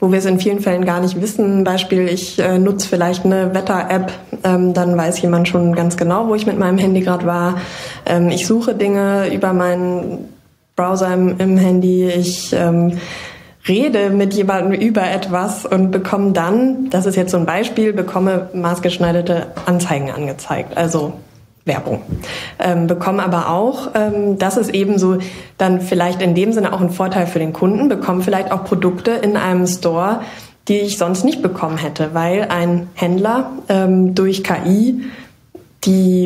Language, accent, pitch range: German, German, 175-195 Hz